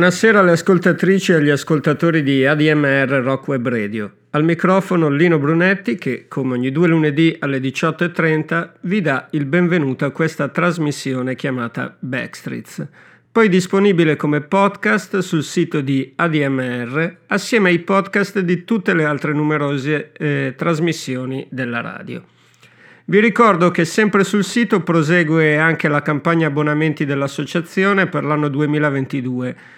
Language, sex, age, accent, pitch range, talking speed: Italian, male, 50-69, native, 140-180 Hz, 130 wpm